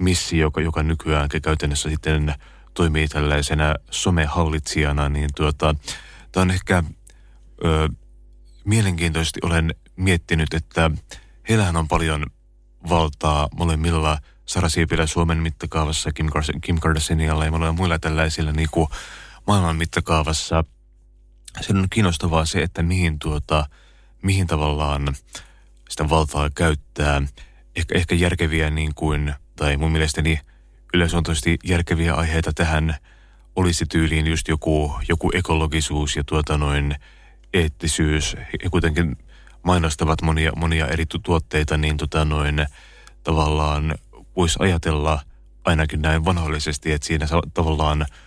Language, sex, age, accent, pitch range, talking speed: Finnish, male, 30-49, native, 75-85 Hz, 115 wpm